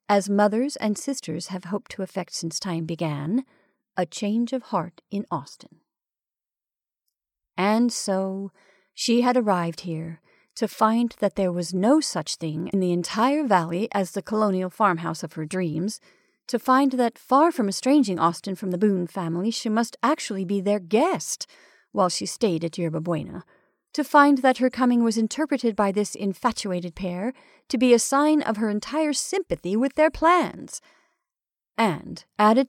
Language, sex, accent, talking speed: English, female, American, 165 wpm